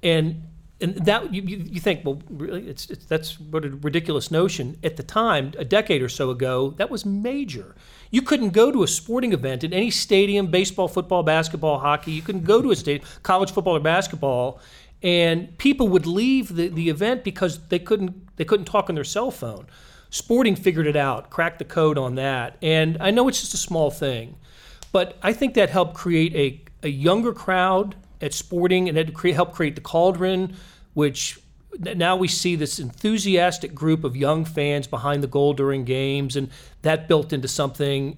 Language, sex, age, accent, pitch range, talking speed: English, male, 40-59, American, 140-185 Hz, 195 wpm